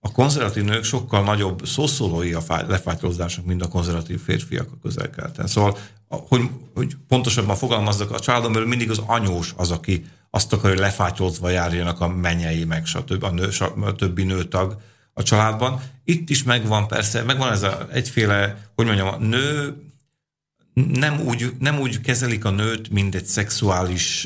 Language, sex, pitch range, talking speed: Slovak, male, 95-120 Hz, 160 wpm